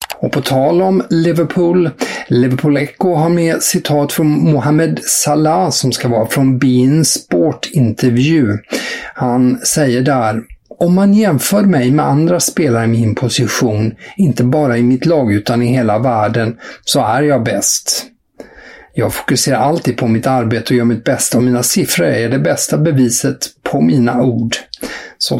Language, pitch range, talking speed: English, 120-145 Hz, 160 wpm